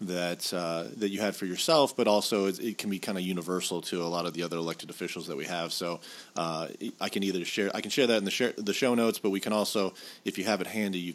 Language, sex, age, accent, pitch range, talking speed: English, male, 40-59, American, 90-105 Hz, 280 wpm